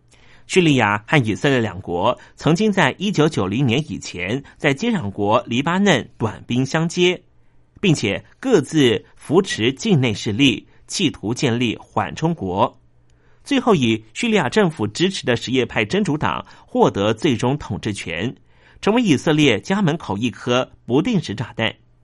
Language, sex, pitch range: Chinese, male, 105-165 Hz